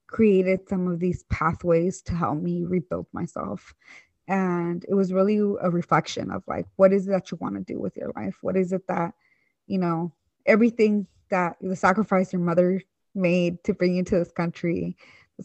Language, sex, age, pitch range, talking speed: English, female, 20-39, 175-195 Hz, 190 wpm